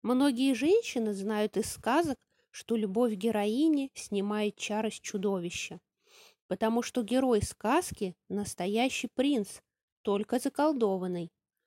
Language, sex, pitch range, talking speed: English, female, 210-275 Hz, 100 wpm